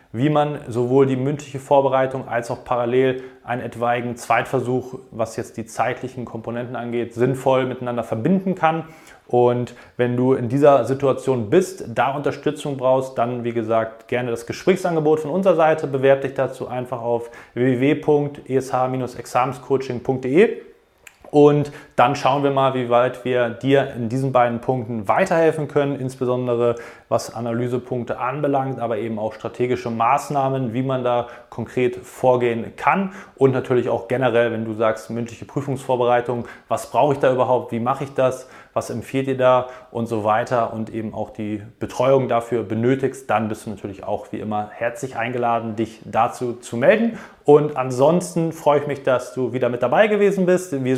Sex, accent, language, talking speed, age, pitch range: male, German, German, 160 wpm, 30-49, 120-135 Hz